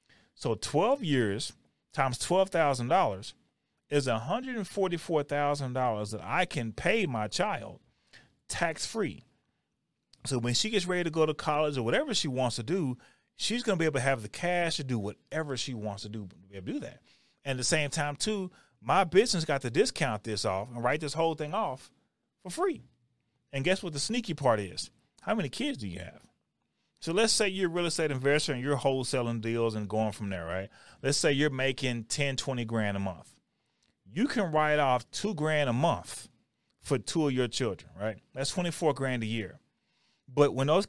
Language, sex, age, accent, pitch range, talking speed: English, male, 30-49, American, 125-180 Hz, 205 wpm